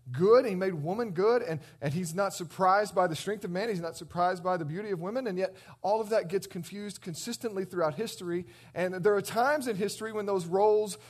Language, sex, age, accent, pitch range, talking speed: English, male, 40-59, American, 170-215 Hz, 225 wpm